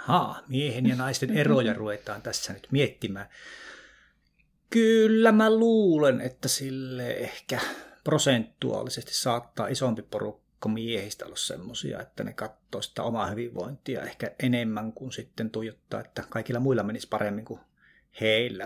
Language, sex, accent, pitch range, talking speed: Finnish, male, native, 115-145 Hz, 130 wpm